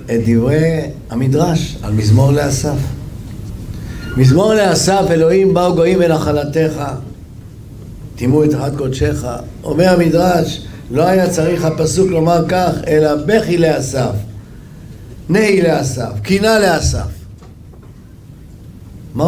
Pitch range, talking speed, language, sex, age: 110-155 Hz, 100 wpm, Hebrew, male, 50-69